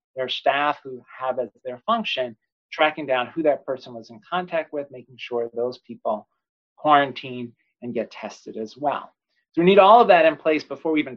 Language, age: English, 40-59